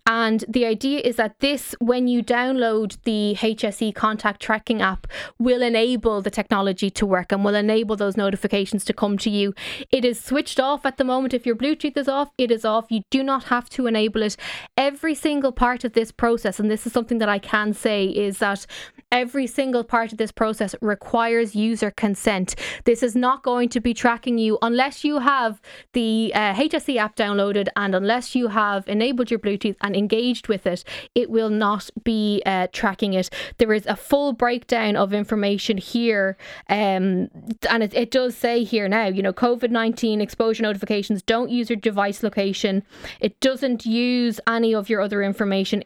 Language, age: English, 20-39